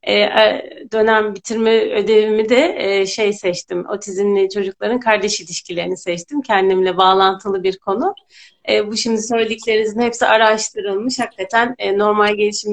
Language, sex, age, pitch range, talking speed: Turkish, female, 30-49, 195-225 Hz, 125 wpm